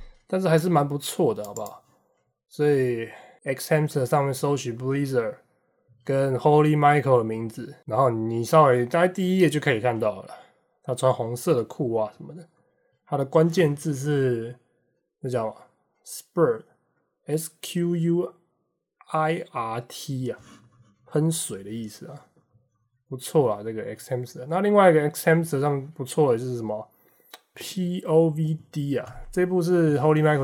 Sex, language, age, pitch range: male, English, 20-39, 120-160 Hz